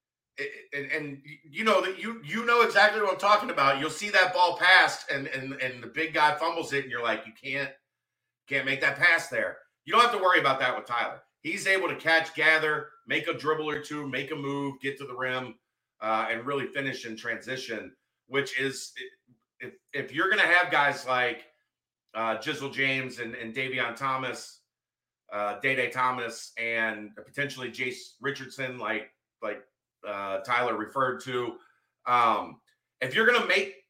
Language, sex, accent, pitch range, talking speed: English, male, American, 130-175 Hz, 180 wpm